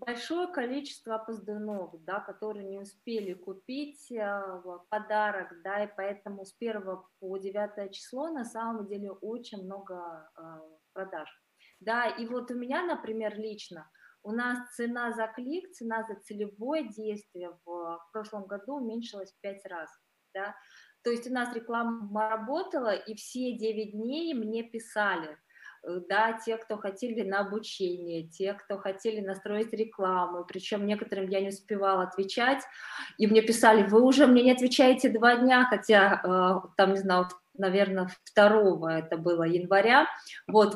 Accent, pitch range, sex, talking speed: native, 195-240 Hz, female, 145 wpm